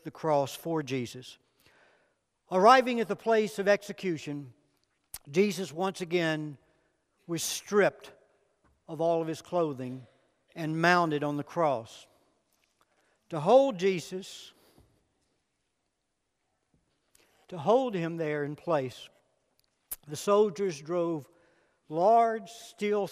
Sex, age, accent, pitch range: male, 60-79, American, 155-205 Hz